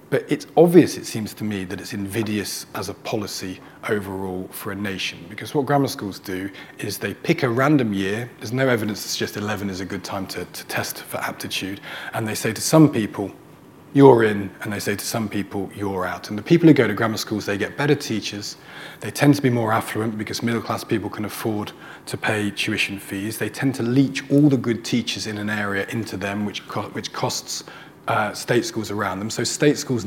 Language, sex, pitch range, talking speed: English, male, 100-130 Hz, 225 wpm